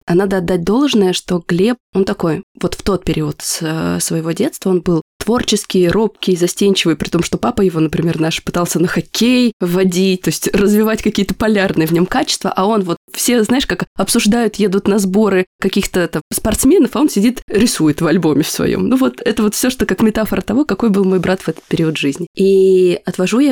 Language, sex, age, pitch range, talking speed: Russian, female, 20-39, 185-225 Hz, 200 wpm